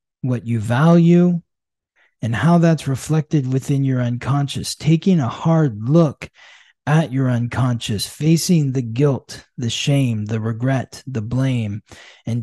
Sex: male